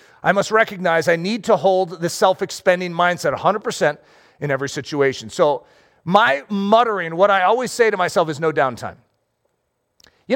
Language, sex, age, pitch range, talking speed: English, male, 40-59, 180-245 Hz, 160 wpm